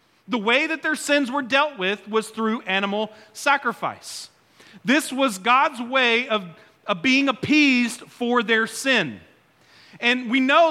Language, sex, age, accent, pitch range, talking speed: English, male, 40-59, American, 215-270 Hz, 145 wpm